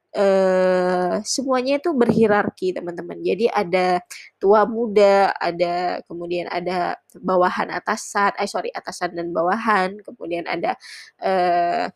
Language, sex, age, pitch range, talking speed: Indonesian, female, 20-39, 185-235 Hz, 115 wpm